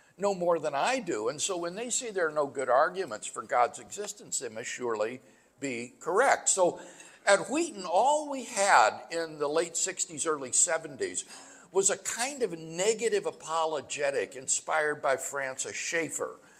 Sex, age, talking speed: male, 60-79, 165 wpm